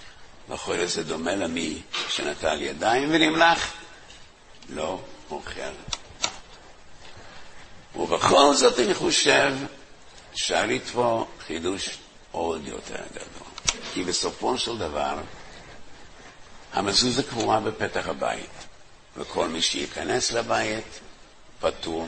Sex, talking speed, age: male, 85 wpm, 60-79